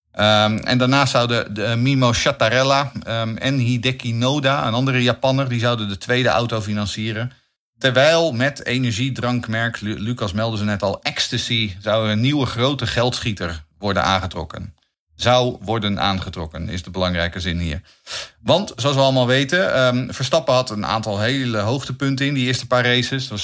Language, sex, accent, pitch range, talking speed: Dutch, male, Dutch, 105-130 Hz, 160 wpm